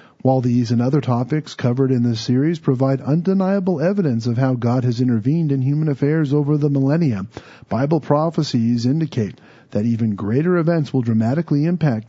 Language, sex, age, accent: English, male, 40-59, American